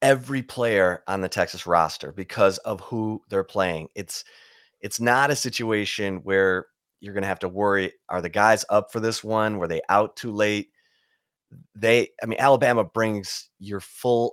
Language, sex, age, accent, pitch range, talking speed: English, male, 30-49, American, 100-130 Hz, 170 wpm